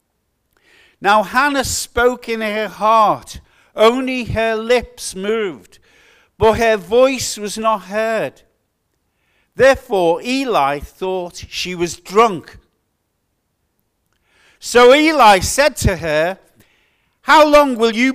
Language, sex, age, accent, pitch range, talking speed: English, male, 50-69, British, 195-255 Hz, 105 wpm